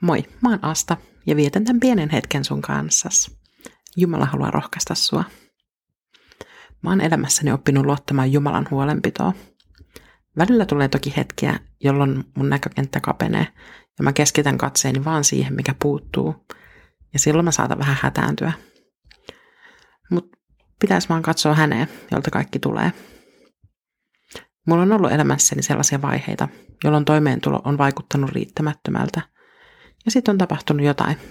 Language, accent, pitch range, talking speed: Finnish, native, 140-170 Hz, 125 wpm